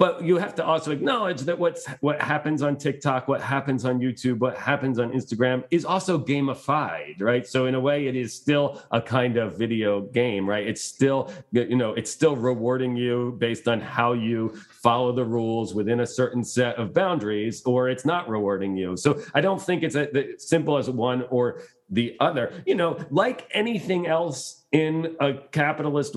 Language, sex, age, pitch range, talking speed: English, male, 40-59, 125-155 Hz, 190 wpm